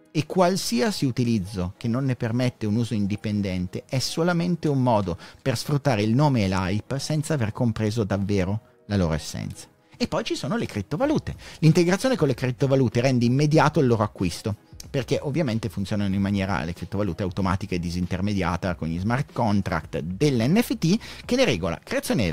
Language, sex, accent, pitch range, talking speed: Italian, male, native, 100-165 Hz, 165 wpm